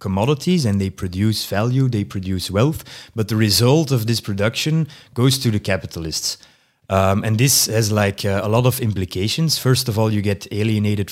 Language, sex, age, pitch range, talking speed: English, male, 20-39, 100-120 Hz, 185 wpm